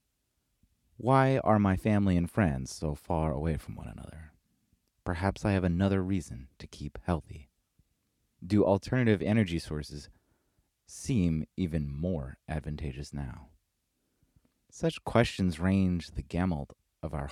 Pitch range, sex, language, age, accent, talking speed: 80-100 Hz, male, English, 30-49, American, 125 wpm